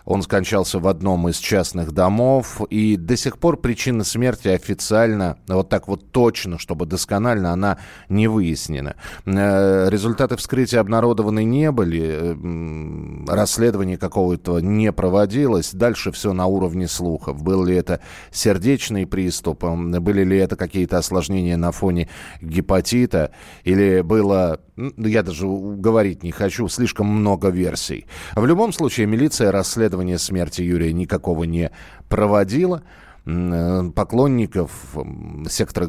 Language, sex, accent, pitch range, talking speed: Russian, male, native, 90-115 Hz, 120 wpm